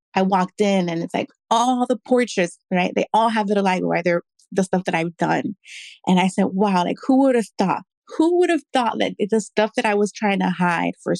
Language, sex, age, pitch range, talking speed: English, female, 20-39, 180-225 Hz, 245 wpm